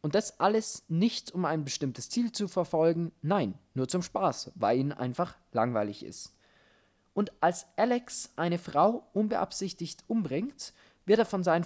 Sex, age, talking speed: male, 20-39, 155 wpm